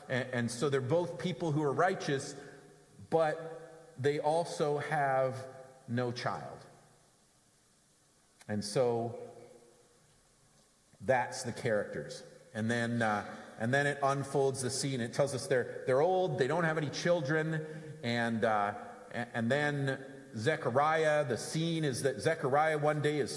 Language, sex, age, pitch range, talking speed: English, male, 40-59, 120-155 Hz, 135 wpm